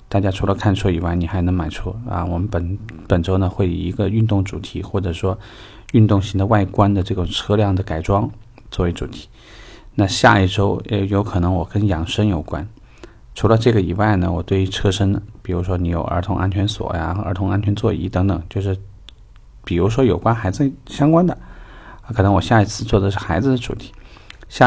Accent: native